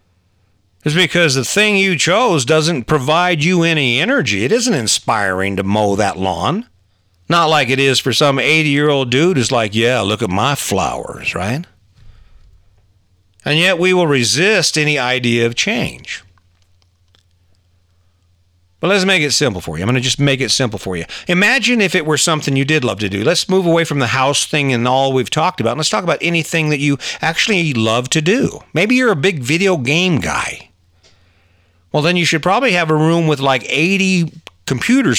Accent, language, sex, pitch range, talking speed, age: American, English, male, 100-160 Hz, 190 wpm, 50-69